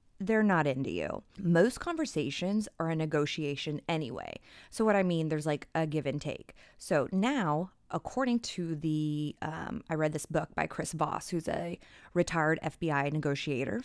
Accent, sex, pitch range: American, female, 155-245 Hz